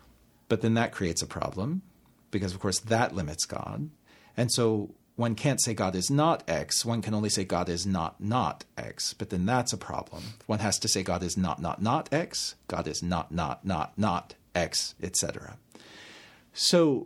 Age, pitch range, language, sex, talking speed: 40-59, 105-140 Hz, English, male, 190 wpm